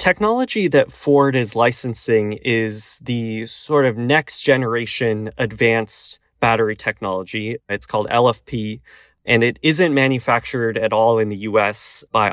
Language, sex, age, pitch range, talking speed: English, male, 20-39, 110-135 Hz, 130 wpm